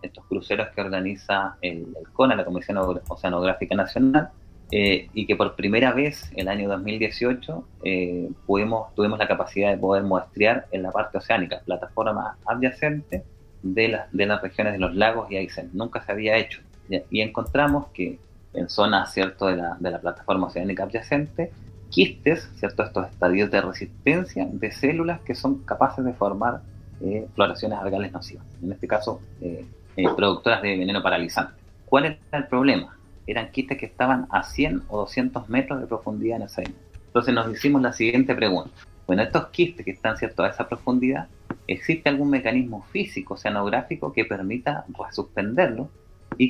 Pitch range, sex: 95-120 Hz, male